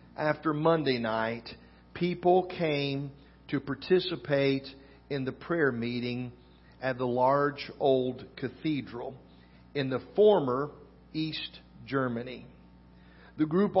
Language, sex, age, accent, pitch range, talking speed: English, male, 50-69, American, 120-175 Hz, 100 wpm